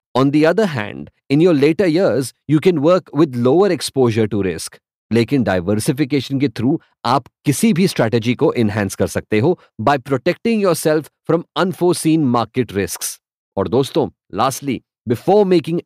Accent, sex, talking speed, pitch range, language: Indian, male, 155 wpm, 115-155 Hz, English